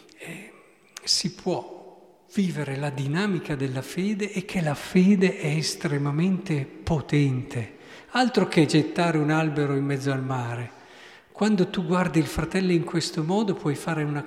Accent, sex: native, male